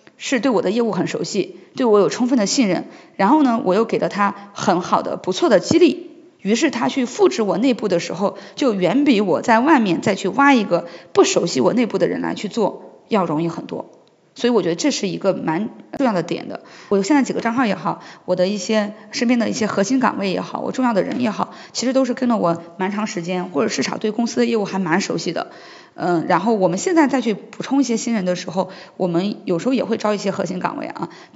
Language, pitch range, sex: Chinese, 185-245 Hz, female